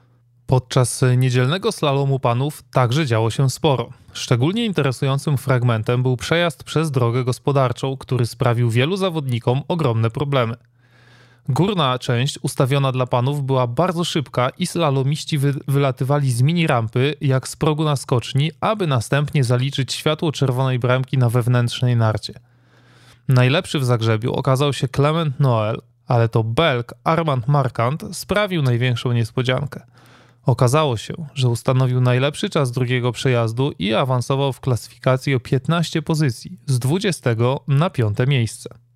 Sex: male